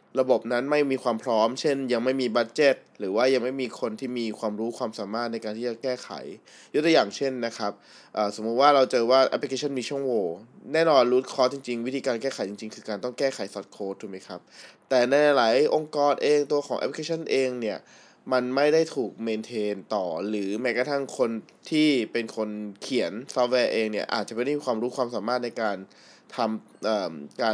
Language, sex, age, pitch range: Thai, male, 20-39, 110-140 Hz